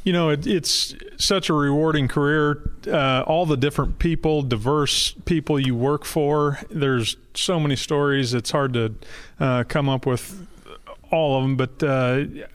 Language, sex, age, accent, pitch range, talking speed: English, male, 30-49, American, 130-160 Hz, 165 wpm